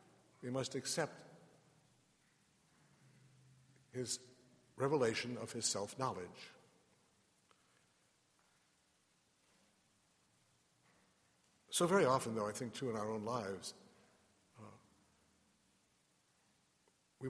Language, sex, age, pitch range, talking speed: English, male, 60-79, 110-135 Hz, 75 wpm